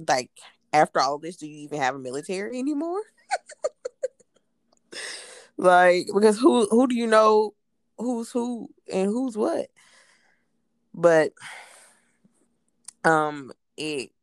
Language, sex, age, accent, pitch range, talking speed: English, female, 20-39, American, 135-175 Hz, 110 wpm